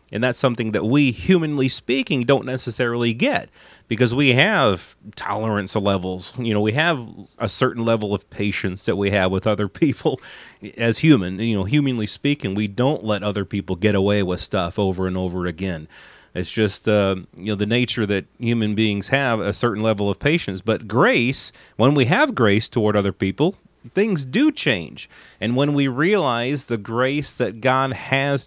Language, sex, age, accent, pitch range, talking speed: English, male, 30-49, American, 105-140 Hz, 180 wpm